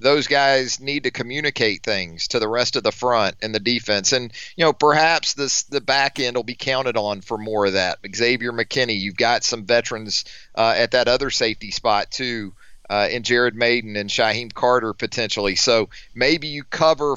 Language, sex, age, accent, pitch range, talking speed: English, male, 40-59, American, 110-140 Hz, 195 wpm